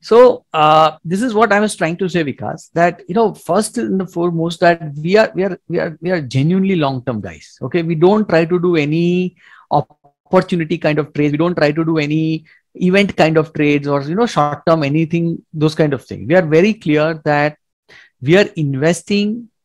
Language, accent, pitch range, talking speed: English, Indian, 145-180 Hz, 210 wpm